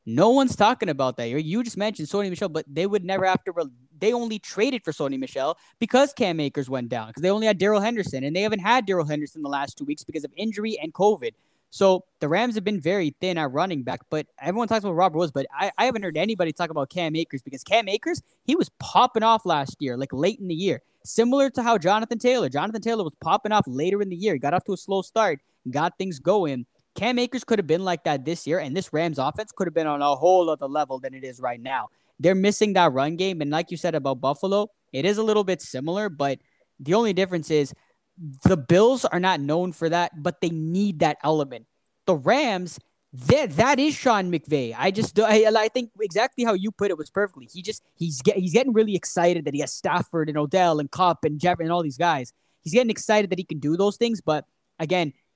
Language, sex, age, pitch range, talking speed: English, male, 10-29, 155-215 Hz, 245 wpm